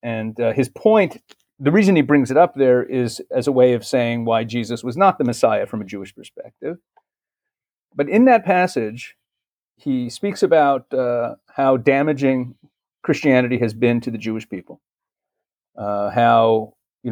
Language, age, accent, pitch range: English, 40-59, American, 115-140 Hz